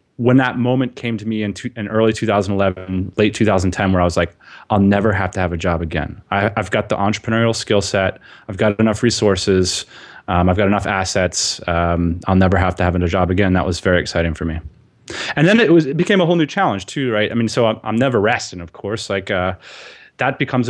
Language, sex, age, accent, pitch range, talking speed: English, male, 30-49, American, 95-115 Hz, 225 wpm